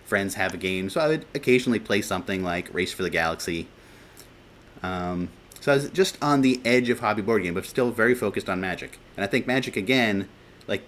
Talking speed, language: 215 wpm, English